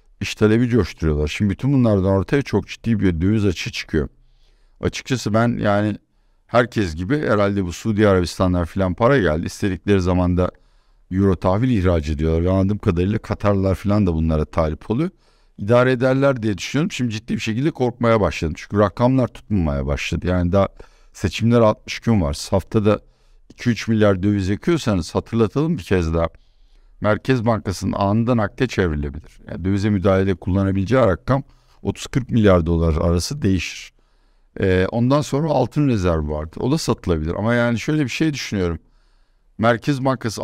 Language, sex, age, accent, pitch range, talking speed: Turkish, male, 60-79, native, 95-125 Hz, 150 wpm